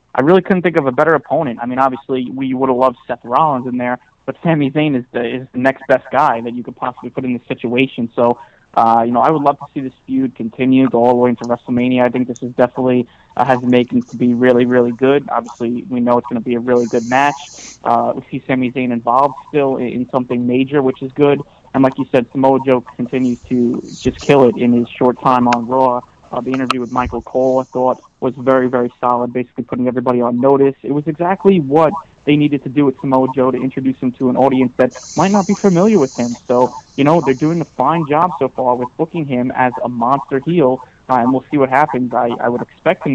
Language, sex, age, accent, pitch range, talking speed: English, male, 20-39, American, 125-145 Hz, 250 wpm